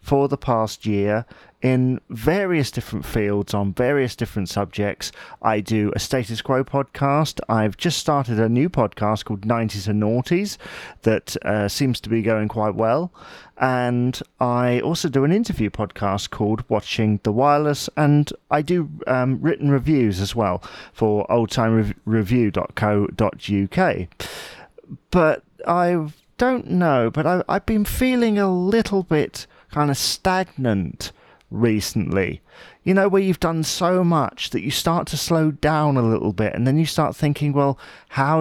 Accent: British